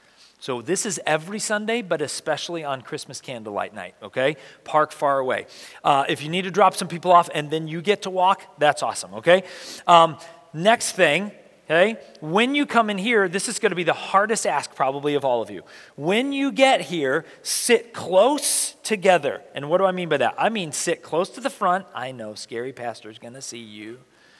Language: English